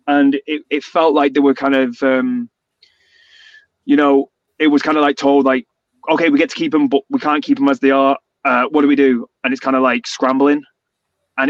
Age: 20-39